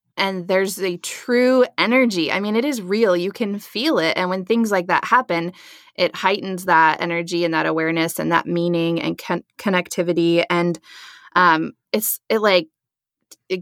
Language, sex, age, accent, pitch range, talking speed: English, female, 20-39, American, 170-200 Hz, 170 wpm